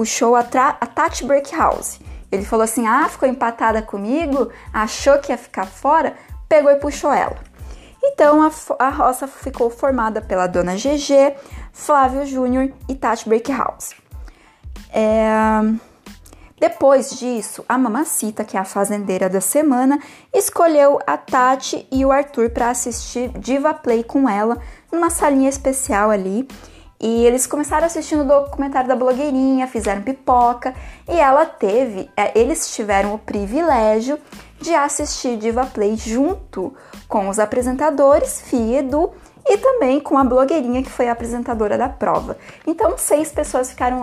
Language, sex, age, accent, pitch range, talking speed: Portuguese, female, 20-39, Brazilian, 230-285 Hz, 145 wpm